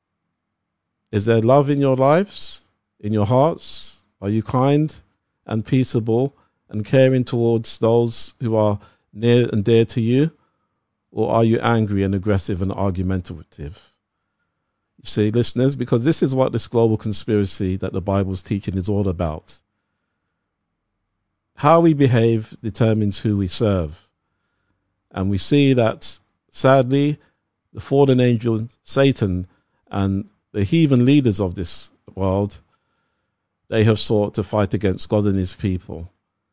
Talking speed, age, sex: 135 wpm, 50-69, male